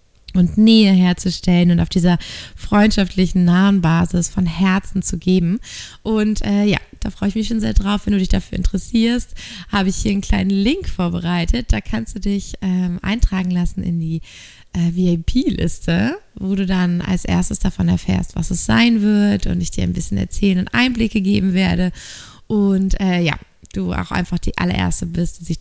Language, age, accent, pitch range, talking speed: German, 20-39, German, 175-205 Hz, 185 wpm